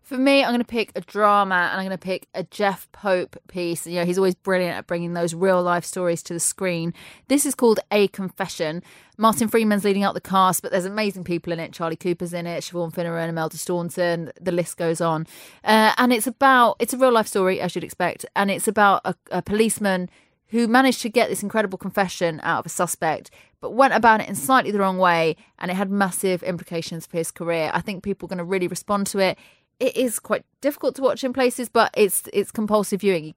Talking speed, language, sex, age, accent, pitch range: 230 wpm, English, female, 20-39, British, 170-215 Hz